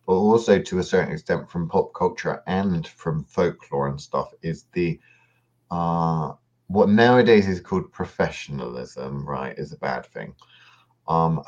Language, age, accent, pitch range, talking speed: English, 30-49, British, 80-105 Hz, 145 wpm